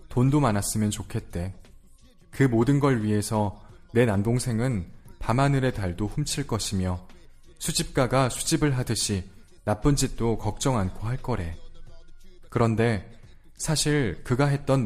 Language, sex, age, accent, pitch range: Korean, male, 20-39, native, 95-125 Hz